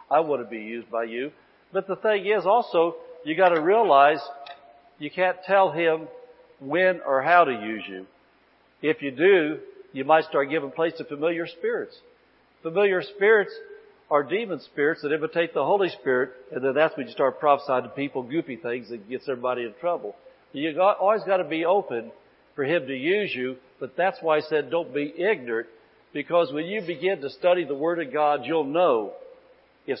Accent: American